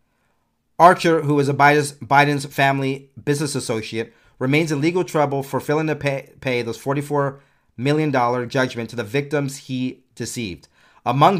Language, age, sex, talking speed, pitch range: English, 40-59, male, 135 wpm, 115-145 Hz